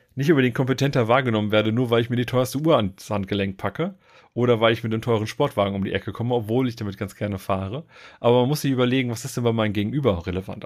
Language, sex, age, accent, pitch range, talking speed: German, male, 40-59, German, 105-135 Hz, 260 wpm